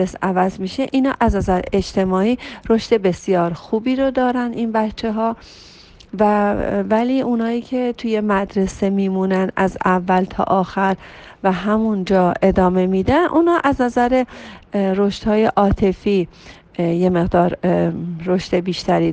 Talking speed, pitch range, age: 120 wpm, 180-225 Hz, 40-59